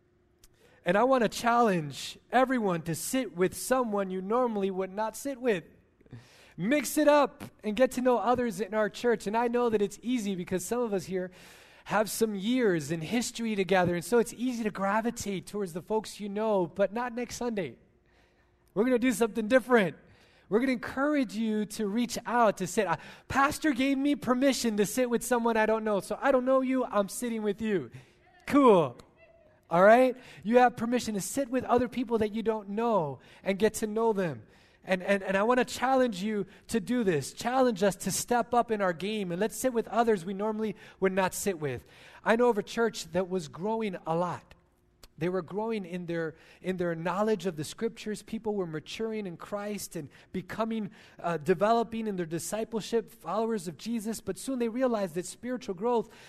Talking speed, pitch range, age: 200 wpm, 185-235 Hz, 20-39